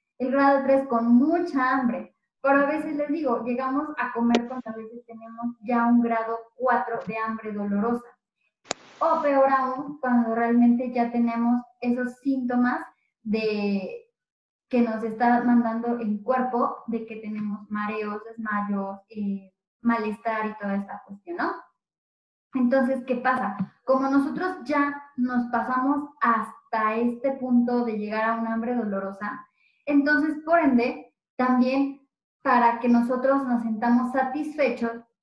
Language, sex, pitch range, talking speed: Spanish, female, 225-260 Hz, 135 wpm